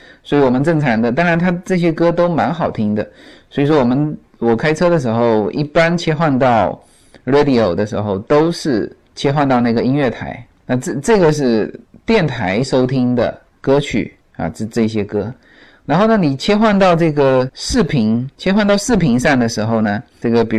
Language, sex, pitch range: Chinese, male, 120-170 Hz